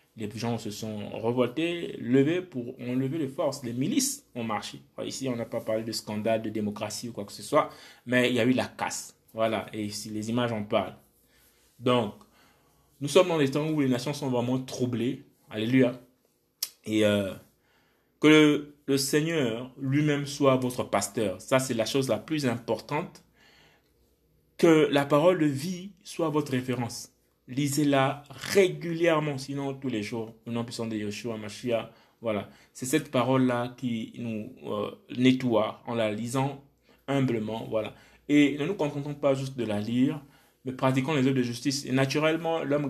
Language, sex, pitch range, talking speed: French, male, 115-145 Hz, 170 wpm